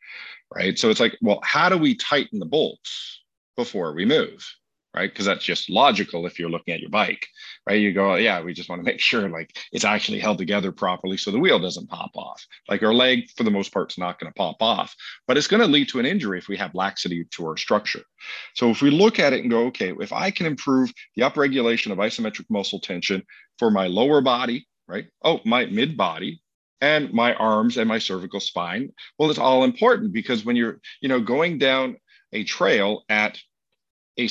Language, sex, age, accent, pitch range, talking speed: English, male, 40-59, American, 100-145 Hz, 220 wpm